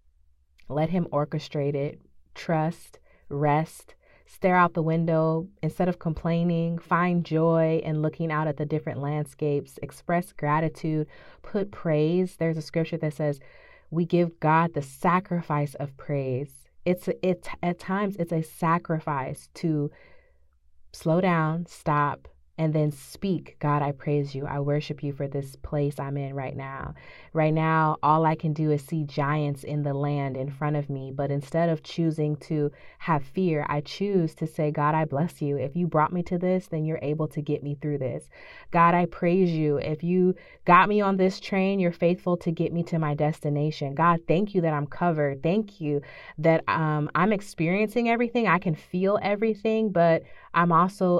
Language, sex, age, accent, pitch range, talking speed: English, female, 30-49, American, 145-175 Hz, 175 wpm